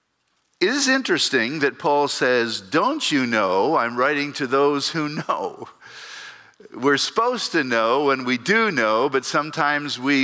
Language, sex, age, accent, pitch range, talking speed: English, male, 50-69, American, 135-225 Hz, 150 wpm